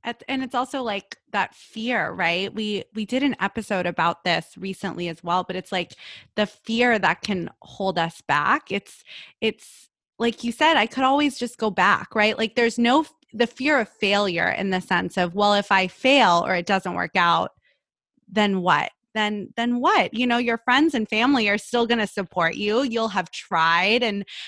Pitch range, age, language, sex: 190-235 Hz, 20-39, English, female